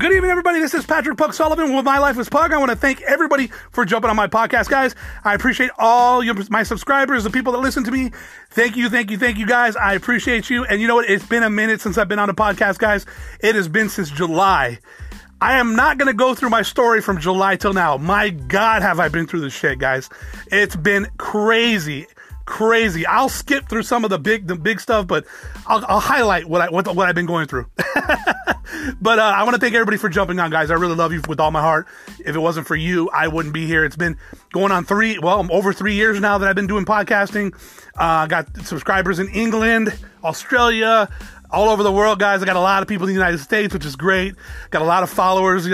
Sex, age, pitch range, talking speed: male, 30-49, 190-245 Hz, 245 wpm